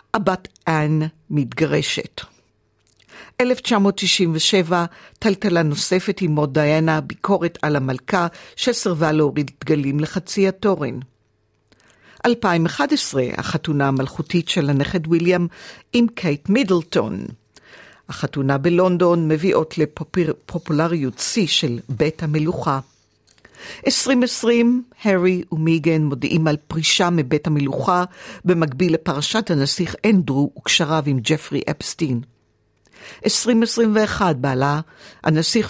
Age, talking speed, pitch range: 50-69, 90 wpm, 145-185 Hz